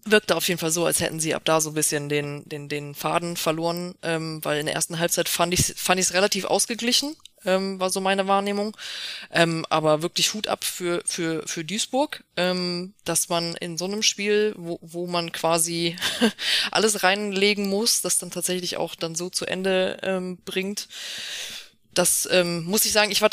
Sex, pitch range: female, 165-195 Hz